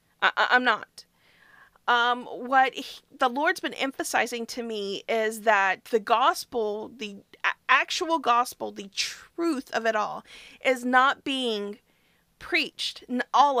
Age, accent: 40-59, American